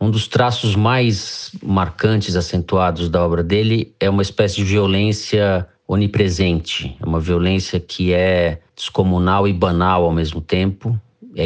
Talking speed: 140 wpm